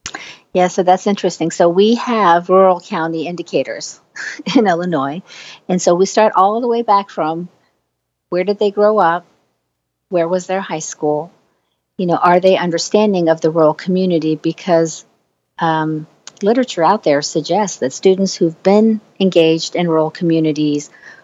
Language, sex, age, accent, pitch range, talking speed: English, female, 50-69, American, 155-185 Hz, 155 wpm